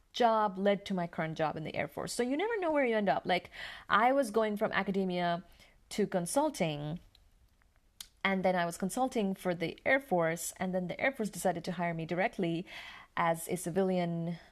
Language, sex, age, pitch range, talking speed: English, female, 30-49, 160-195 Hz, 200 wpm